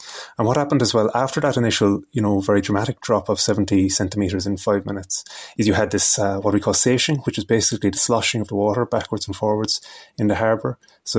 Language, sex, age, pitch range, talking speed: English, male, 30-49, 100-115 Hz, 230 wpm